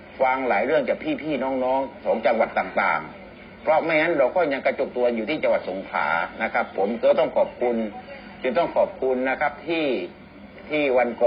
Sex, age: male, 60-79